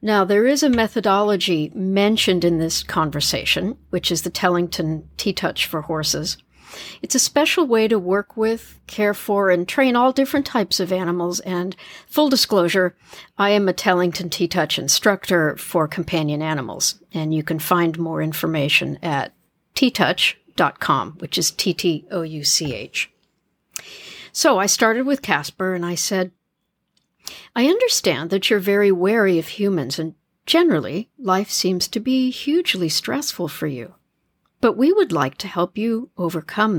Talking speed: 145 wpm